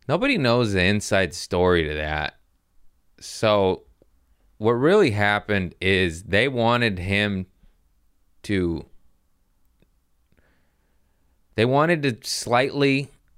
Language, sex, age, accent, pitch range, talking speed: English, male, 20-39, American, 85-110 Hz, 90 wpm